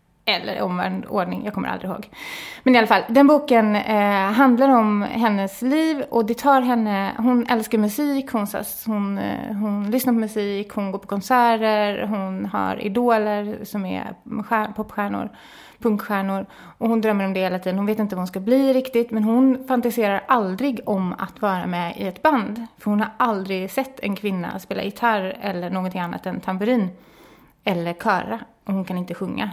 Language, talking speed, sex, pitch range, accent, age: English, 175 wpm, female, 190-235 Hz, Swedish, 20-39